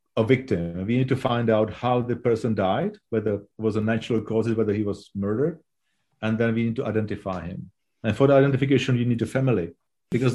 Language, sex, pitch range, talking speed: English, male, 105-125 Hz, 215 wpm